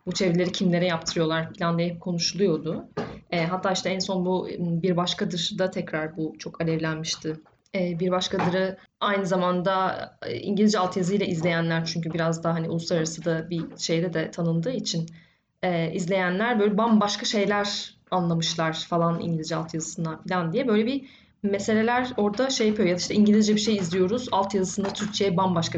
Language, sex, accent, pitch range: Turkish, female, native, 175-215 Hz